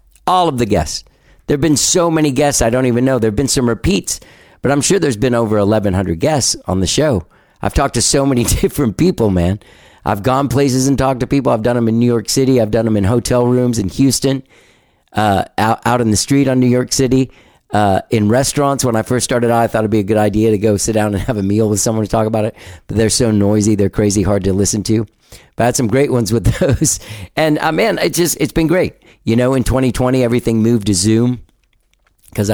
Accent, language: American, English